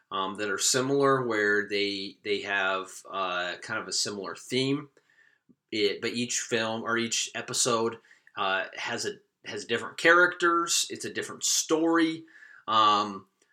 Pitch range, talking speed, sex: 105-135 Hz, 140 wpm, male